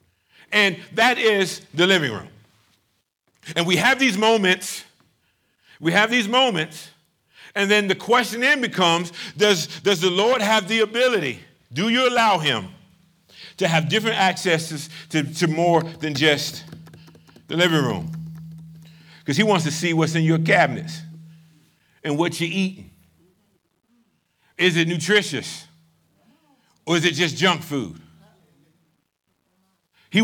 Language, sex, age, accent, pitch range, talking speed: English, male, 50-69, American, 160-195 Hz, 135 wpm